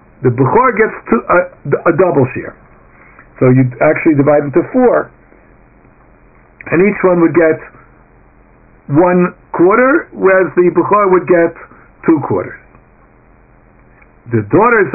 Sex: male